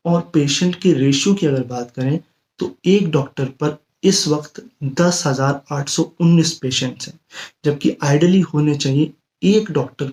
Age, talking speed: 30-49, 150 wpm